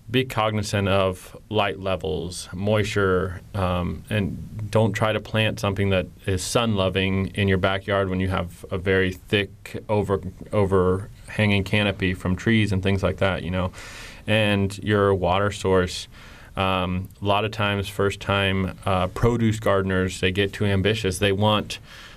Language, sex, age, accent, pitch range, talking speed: English, male, 30-49, American, 95-110 Hz, 155 wpm